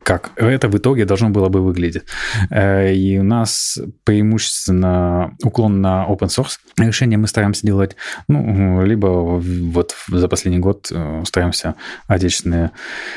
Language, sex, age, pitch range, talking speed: Russian, male, 20-39, 90-110 Hz, 130 wpm